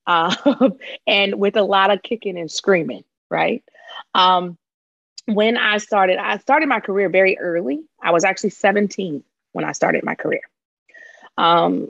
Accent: American